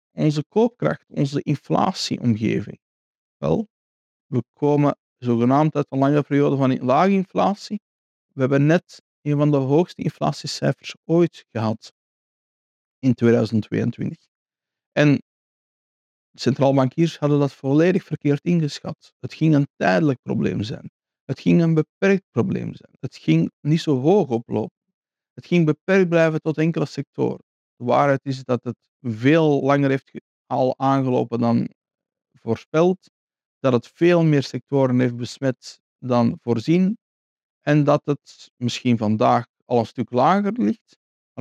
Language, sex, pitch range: Dutch, male, 120-160 Hz